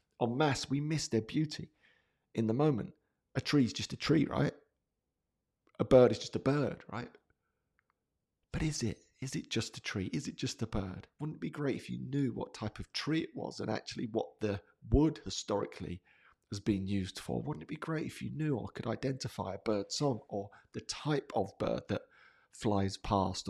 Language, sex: English, male